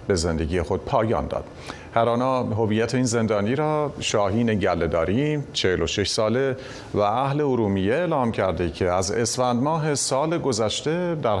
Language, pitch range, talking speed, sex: Persian, 105-135 Hz, 145 wpm, male